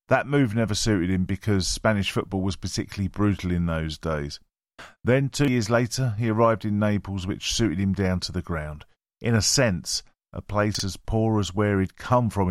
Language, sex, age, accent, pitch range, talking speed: English, male, 40-59, British, 90-110 Hz, 195 wpm